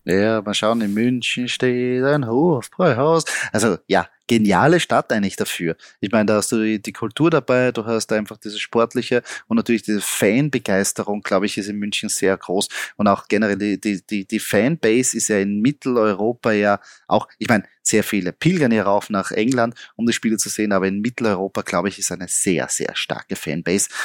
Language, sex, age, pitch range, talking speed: German, male, 20-39, 105-130 Hz, 190 wpm